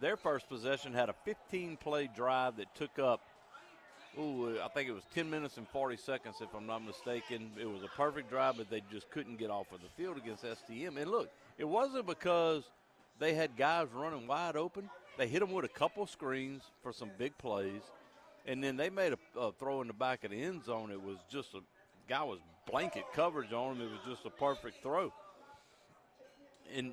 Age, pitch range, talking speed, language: 50-69, 115-155 Hz, 205 wpm, English